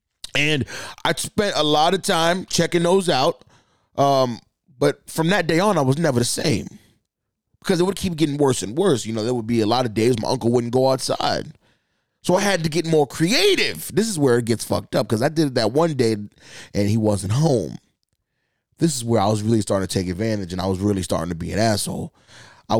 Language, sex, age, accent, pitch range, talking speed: English, male, 20-39, American, 110-155 Hz, 230 wpm